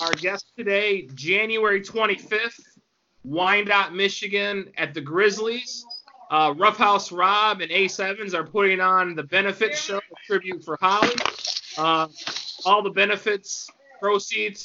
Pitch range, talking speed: 175-205 Hz, 120 wpm